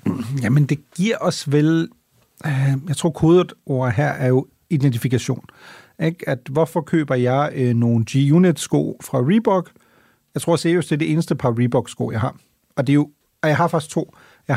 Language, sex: Danish, male